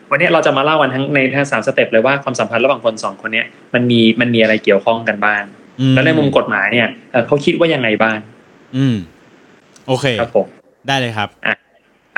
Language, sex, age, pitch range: Thai, male, 20-39, 120-160 Hz